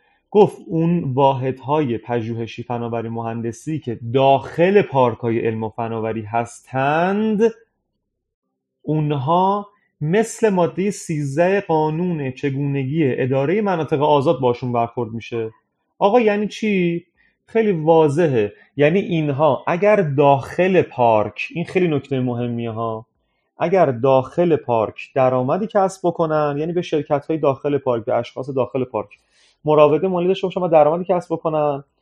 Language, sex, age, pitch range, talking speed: Persian, male, 30-49, 125-170 Hz, 120 wpm